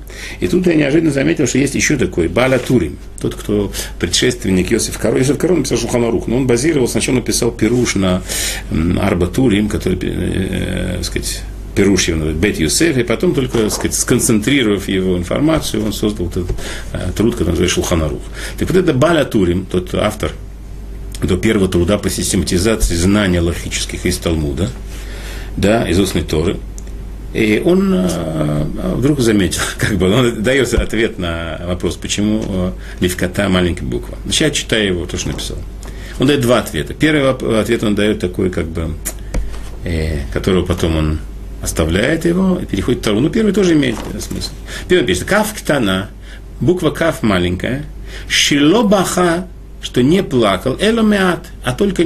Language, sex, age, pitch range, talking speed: Russian, male, 40-59, 90-120 Hz, 155 wpm